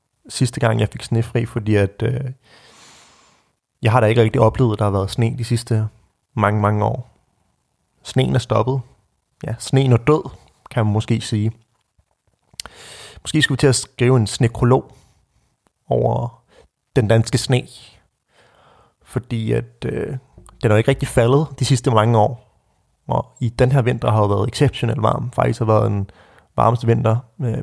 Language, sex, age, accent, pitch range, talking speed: Danish, male, 30-49, native, 105-130 Hz, 165 wpm